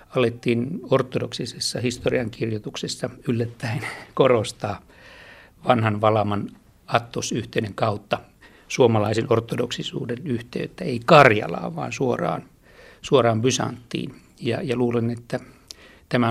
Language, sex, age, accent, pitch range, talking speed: Finnish, male, 60-79, native, 115-140 Hz, 85 wpm